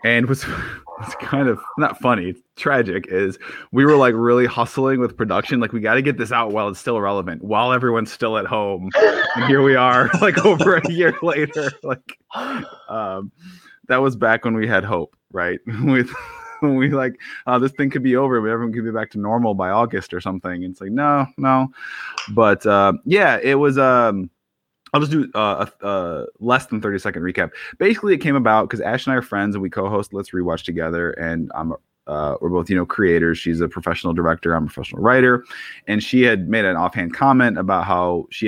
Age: 20-39